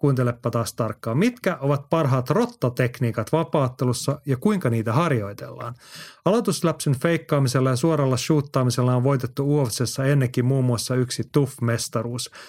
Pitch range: 120-145 Hz